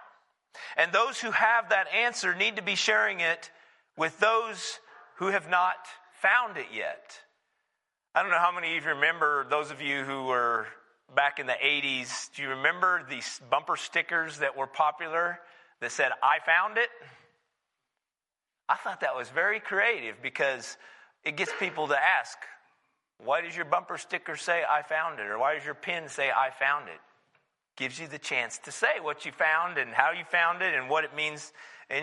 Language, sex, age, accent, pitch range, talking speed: English, male, 40-59, American, 155-220 Hz, 185 wpm